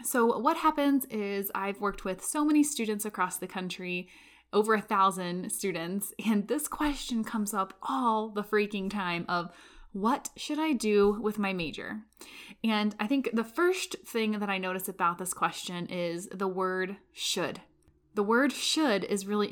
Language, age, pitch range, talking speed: English, 10-29, 190-240 Hz, 170 wpm